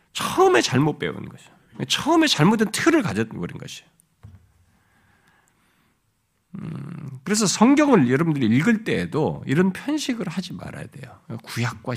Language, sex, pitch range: Korean, male, 135-210 Hz